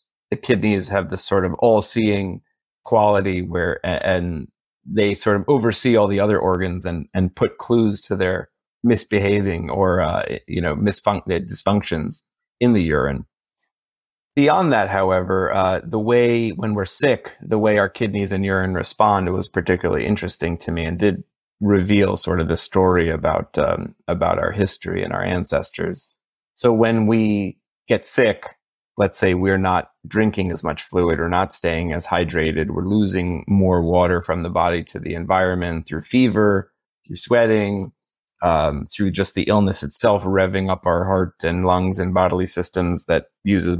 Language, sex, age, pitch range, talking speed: English, male, 30-49, 90-105 Hz, 165 wpm